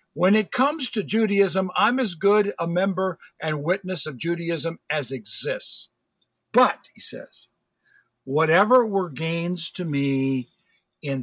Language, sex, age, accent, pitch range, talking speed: English, male, 50-69, American, 150-200 Hz, 135 wpm